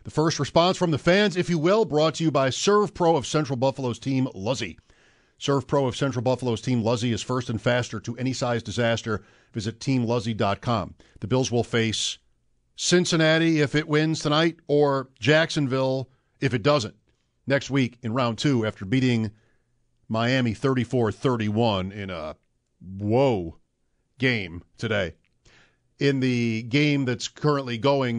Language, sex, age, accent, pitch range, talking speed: English, male, 50-69, American, 115-150 Hz, 155 wpm